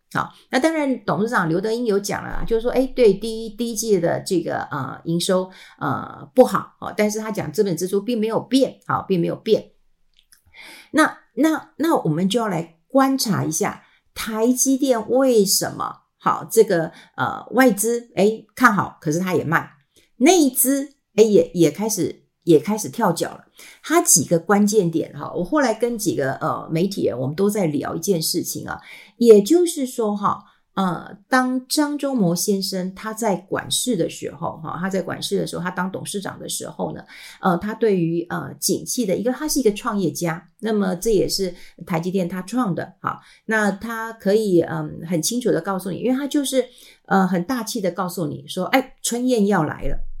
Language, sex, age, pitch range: Chinese, female, 50-69, 180-245 Hz